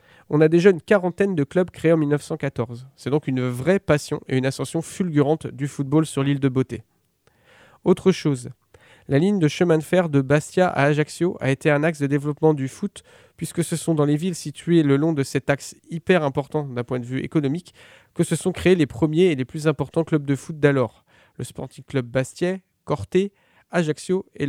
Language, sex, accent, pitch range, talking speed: French, male, French, 130-165 Hz, 210 wpm